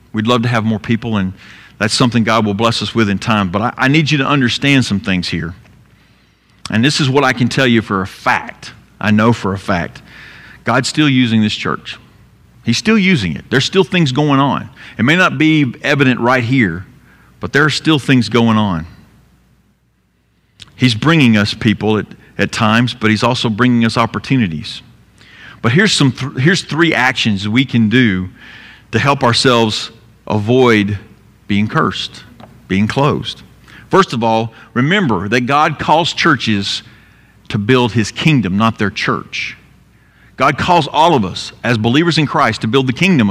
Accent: American